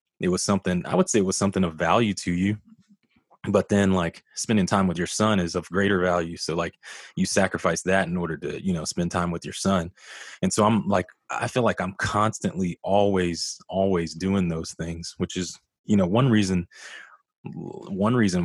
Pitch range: 85-95 Hz